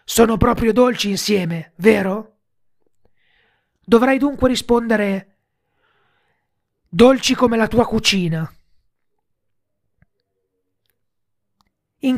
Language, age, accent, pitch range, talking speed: Italian, 30-49, native, 180-250 Hz, 70 wpm